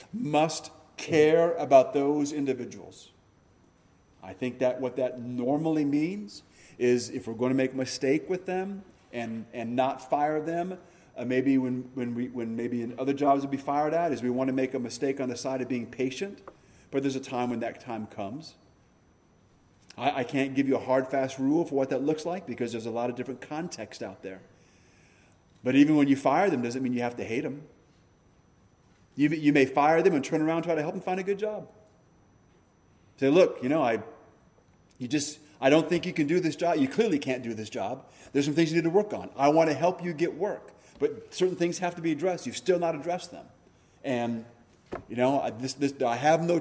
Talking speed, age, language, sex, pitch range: 220 wpm, 40-59, English, male, 125-165 Hz